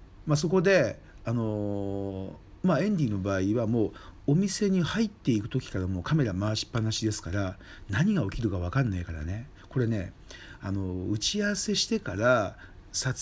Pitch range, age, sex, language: 100-145 Hz, 50-69, male, Japanese